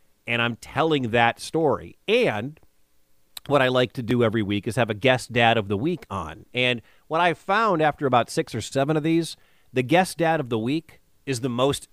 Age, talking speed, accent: 40-59, 210 wpm, American